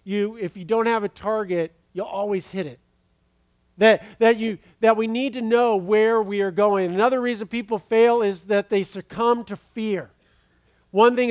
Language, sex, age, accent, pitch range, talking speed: English, male, 50-69, American, 190-235 Hz, 185 wpm